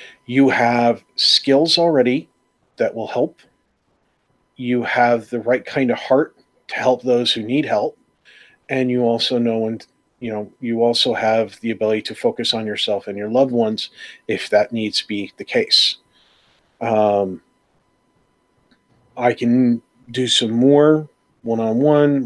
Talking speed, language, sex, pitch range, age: 150 wpm, English, male, 115-130 Hz, 40-59